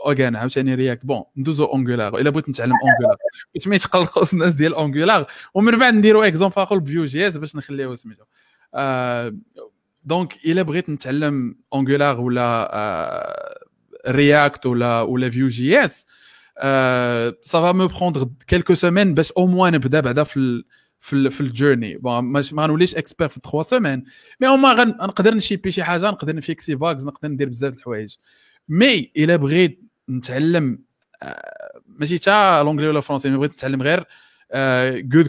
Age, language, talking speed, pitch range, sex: 20-39, Arabic, 55 wpm, 135-185 Hz, male